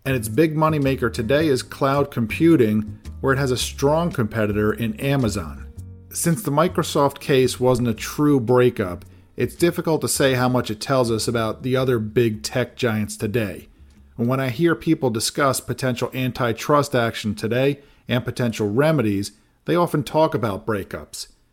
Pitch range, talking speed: 110-140 Hz, 165 wpm